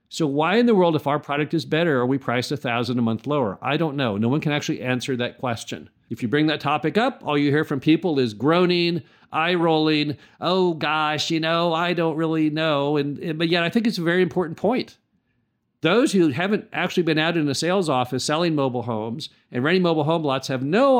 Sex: male